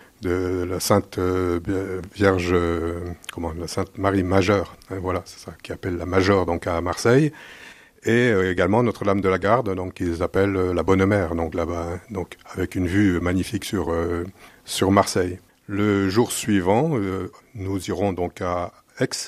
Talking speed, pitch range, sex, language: 175 wpm, 90-100 Hz, male, French